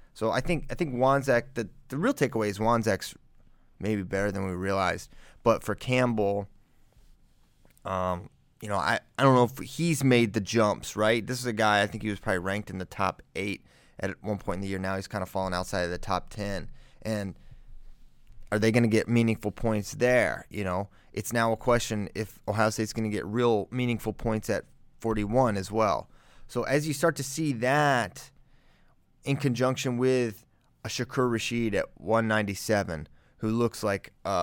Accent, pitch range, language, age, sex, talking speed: American, 100-120 Hz, English, 30-49, male, 190 wpm